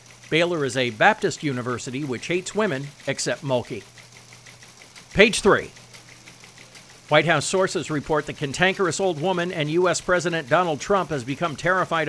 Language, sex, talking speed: English, male, 140 wpm